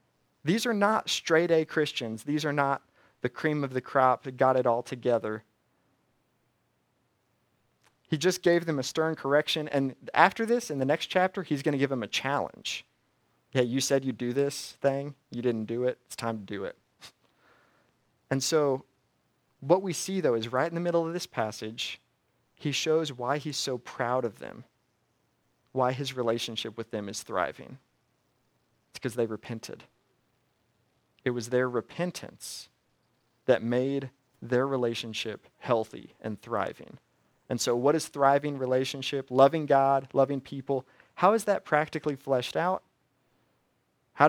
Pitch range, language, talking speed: 120-150 Hz, English, 155 wpm